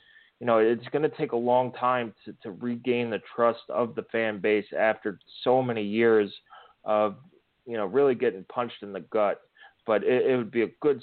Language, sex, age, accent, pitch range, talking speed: English, male, 30-49, American, 110-125 Hz, 205 wpm